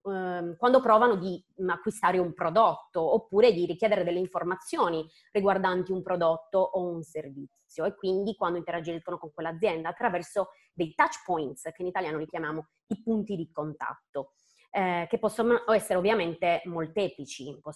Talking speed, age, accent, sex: 140 wpm, 20-39, native, female